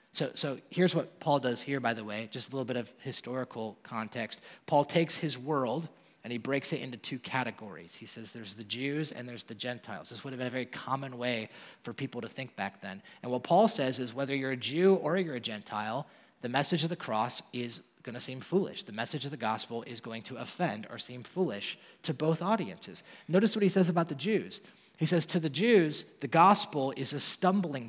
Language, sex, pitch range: English, male, 125-180 Hz